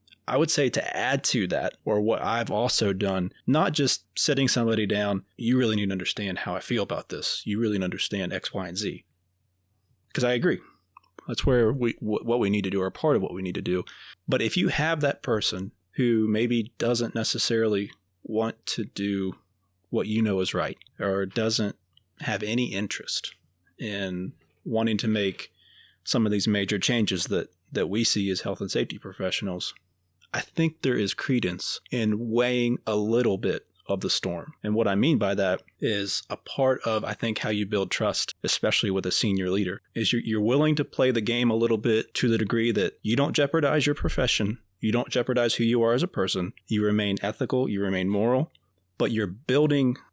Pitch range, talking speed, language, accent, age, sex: 100-120 Hz, 200 wpm, English, American, 30-49, male